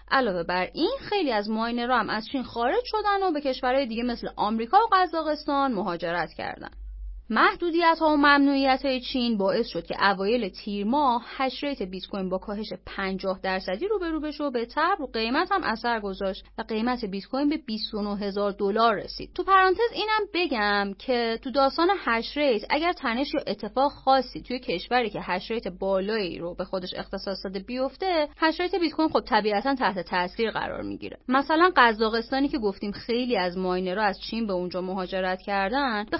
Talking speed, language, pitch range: 165 wpm, Persian, 200-285 Hz